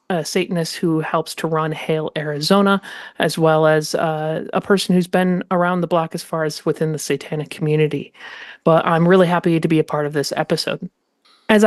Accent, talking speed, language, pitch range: American, 195 wpm, English, 165-200 Hz